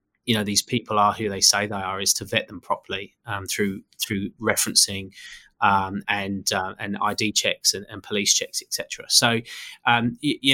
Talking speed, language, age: 195 wpm, English, 20-39